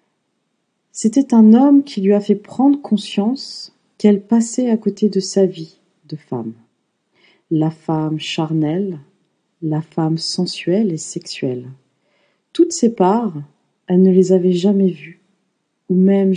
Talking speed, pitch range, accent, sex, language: 135 wpm, 165-215 Hz, French, female, French